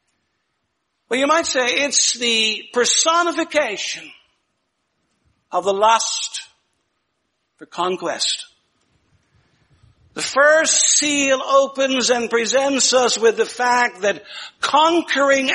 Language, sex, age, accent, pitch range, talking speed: English, male, 60-79, American, 245-305 Hz, 95 wpm